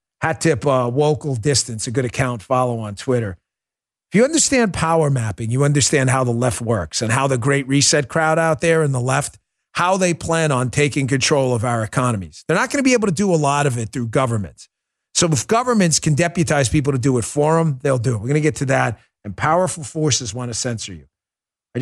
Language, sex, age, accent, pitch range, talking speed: English, male, 40-59, American, 115-150 Hz, 230 wpm